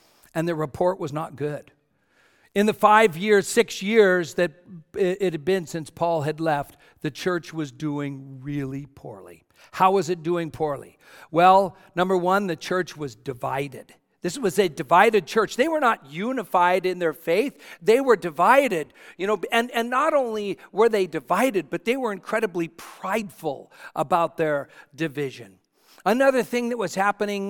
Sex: male